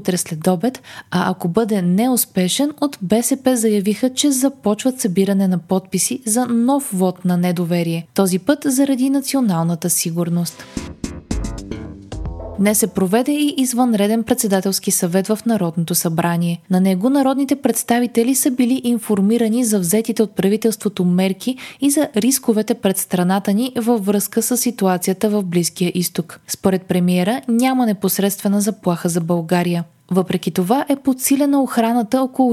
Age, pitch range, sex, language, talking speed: 20-39, 180-240 Hz, female, Bulgarian, 130 wpm